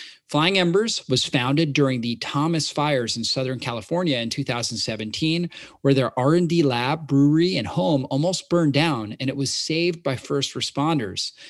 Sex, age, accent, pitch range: male, 30-49, American, 120-160 Hz